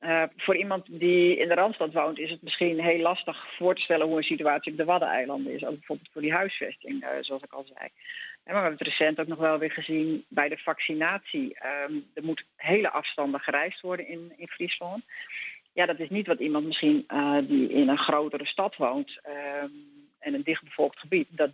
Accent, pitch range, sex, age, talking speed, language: Dutch, 155-190 Hz, female, 40-59, 215 wpm, Dutch